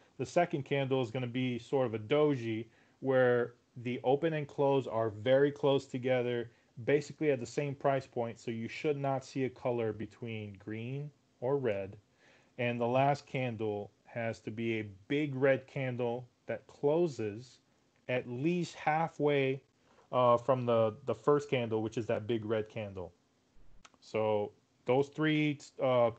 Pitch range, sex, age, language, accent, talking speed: 115-140 Hz, male, 30-49, English, American, 160 wpm